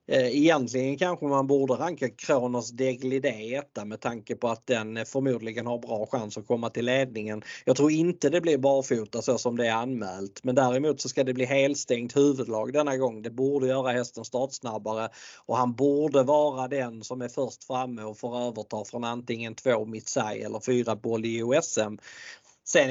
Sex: male